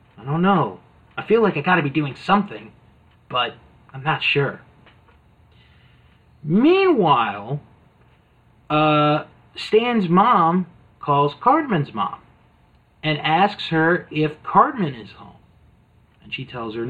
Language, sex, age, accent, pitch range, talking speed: English, male, 30-49, American, 120-175 Hz, 115 wpm